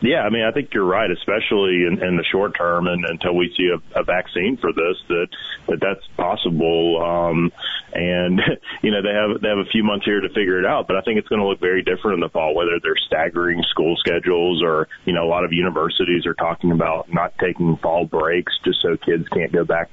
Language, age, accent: English, 30-49, American